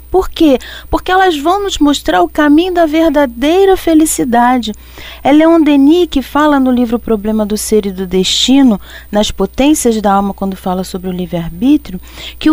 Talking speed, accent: 170 wpm, Brazilian